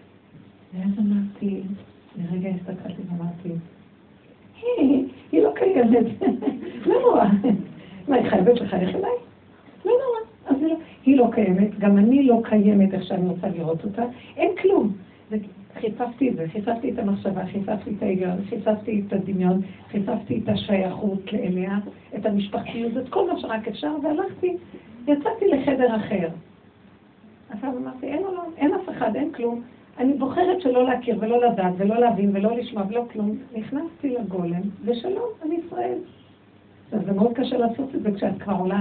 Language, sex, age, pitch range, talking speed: Hebrew, female, 50-69, 200-270 Hz, 135 wpm